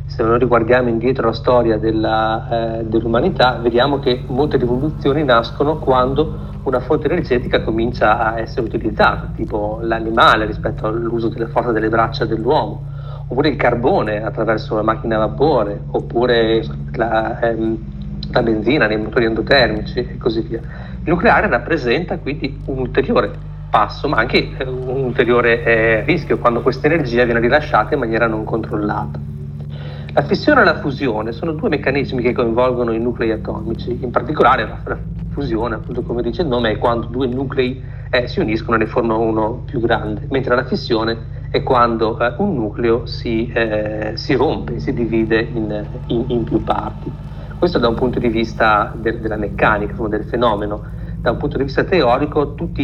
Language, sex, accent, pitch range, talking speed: Italian, male, native, 110-135 Hz, 165 wpm